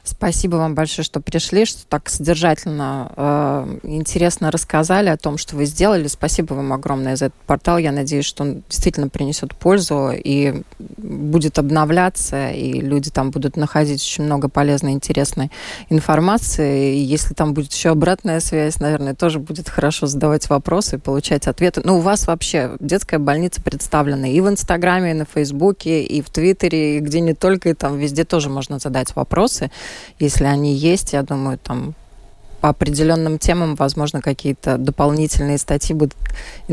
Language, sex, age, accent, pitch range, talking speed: Russian, female, 20-39, native, 145-170 Hz, 165 wpm